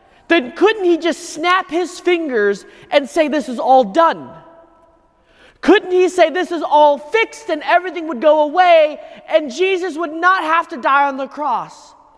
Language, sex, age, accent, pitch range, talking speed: English, male, 20-39, American, 255-340 Hz, 170 wpm